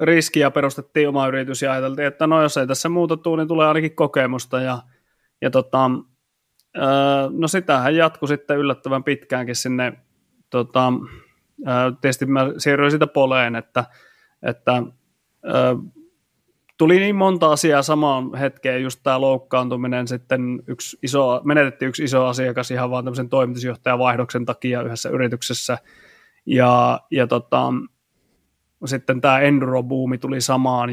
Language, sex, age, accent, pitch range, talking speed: Finnish, male, 30-49, native, 125-150 Hz, 130 wpm